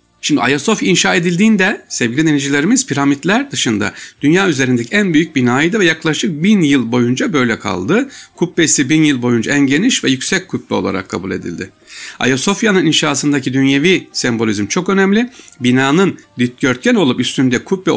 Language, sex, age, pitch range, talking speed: Turkish, male, 60-79, 115-175 Hz, 145 wpm